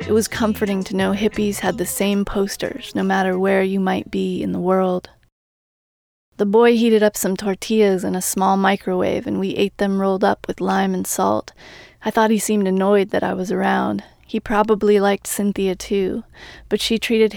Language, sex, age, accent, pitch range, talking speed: English, female, 20-39, American, 190-205 Hz, 195 wpm